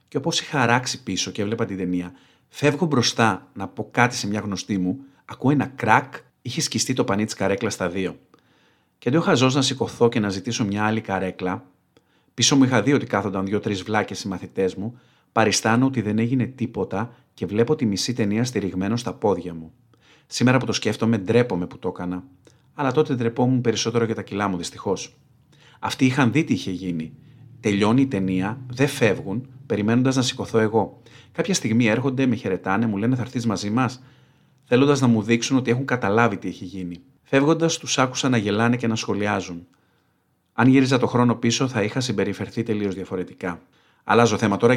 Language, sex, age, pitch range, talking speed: Greek, male, 40-59, 100-130 Hz, 185 wpm